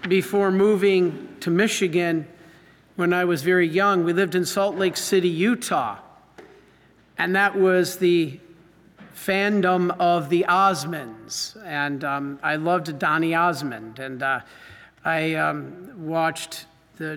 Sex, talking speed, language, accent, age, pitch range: male, 125 wpm, English, American, 50-69, 160-185 Hz